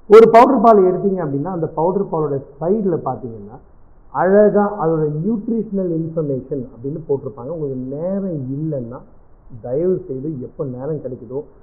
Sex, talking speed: male, 120 wpm